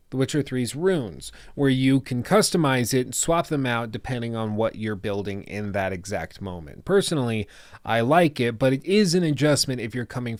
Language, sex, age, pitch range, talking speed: English, male, 30-49, 105-140 Hz, 195 wpm